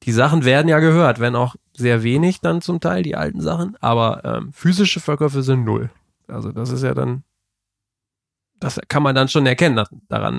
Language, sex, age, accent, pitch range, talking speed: German, male, 20-39, German, 105-140 Hz, 195 wpm